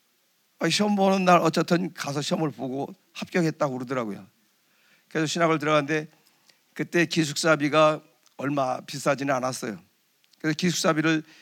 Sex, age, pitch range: male, 50-69, 145-180 Hz